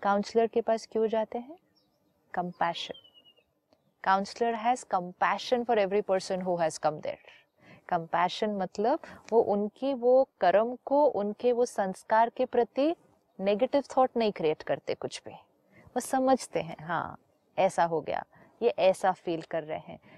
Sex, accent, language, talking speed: female, native, Hindi, 145 wpm